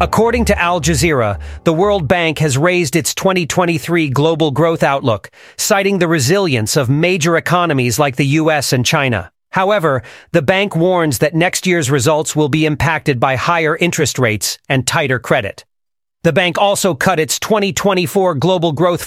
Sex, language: male, English